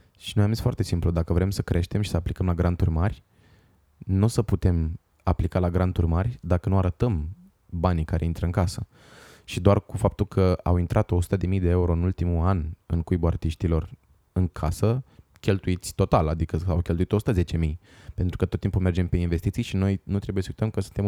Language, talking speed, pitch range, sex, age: Romanian, 200 wpm, 85-105 Hz, male, 20-39